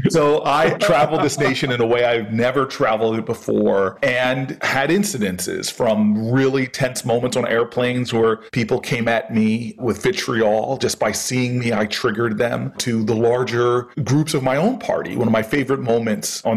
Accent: American